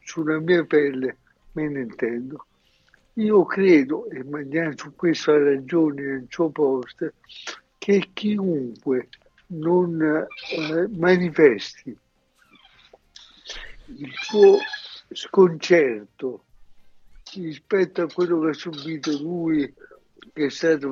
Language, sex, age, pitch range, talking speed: Italian, male, 60-79, 145-175 Hz, 100 wpm